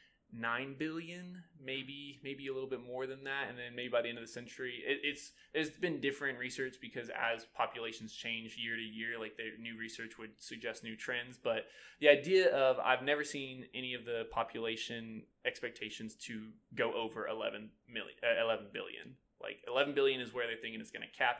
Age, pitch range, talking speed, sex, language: 20-39, 115-140 Hz, 200 wpm, male, English